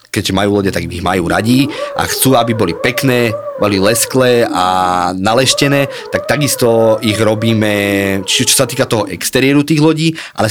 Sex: male